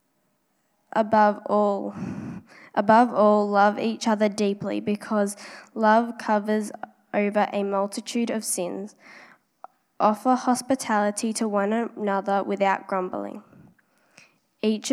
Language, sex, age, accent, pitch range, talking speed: English, female, 10-29, Australian, 200-225 Hz, 95 wpm